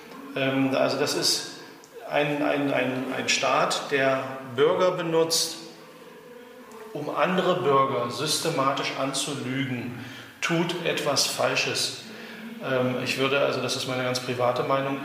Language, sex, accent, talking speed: German, male, German, 110 wpm